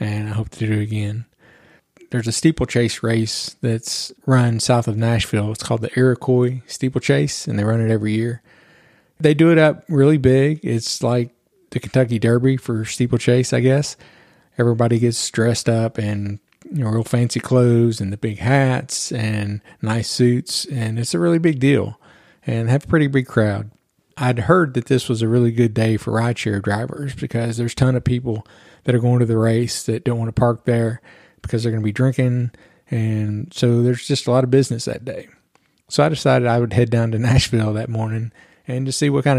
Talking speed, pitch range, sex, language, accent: 200 wpm, 115-130 Hz, male, English, American